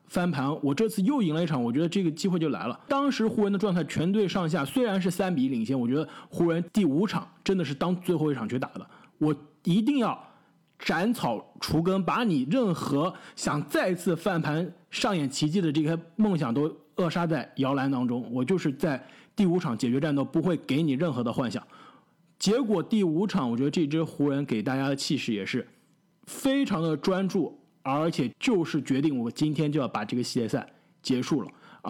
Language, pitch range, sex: Chinese, 145-205 Hz, male